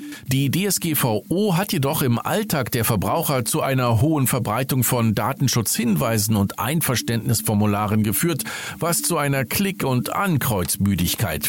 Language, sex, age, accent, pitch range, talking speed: German, male, 50-69, German, 110-160 Hz, 120 wpm